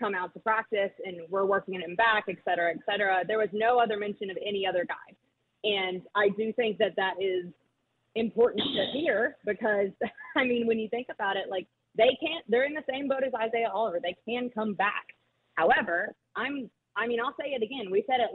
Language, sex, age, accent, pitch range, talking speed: English, female, 30-49, American, 185-240 Hz, 220 wpm